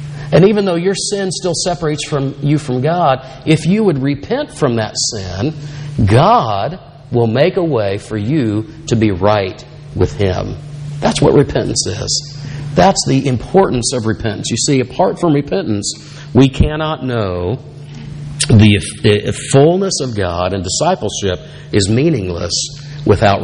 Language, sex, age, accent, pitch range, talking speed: English, male, 50-69, American, 115-155 Hz, 150 wpm